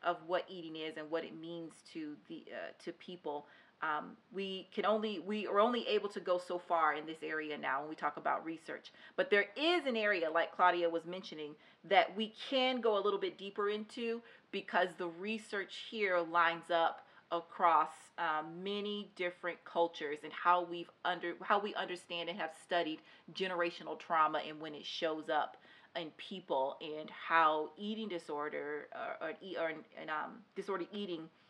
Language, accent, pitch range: English, American, 160-195 Hz